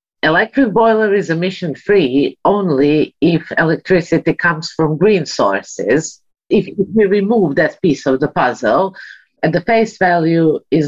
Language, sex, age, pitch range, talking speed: English, female, 50-69, 155-200 Hz, 130 wpm